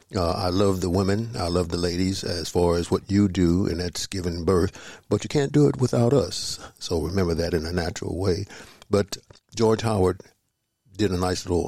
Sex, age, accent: male, 60-79, American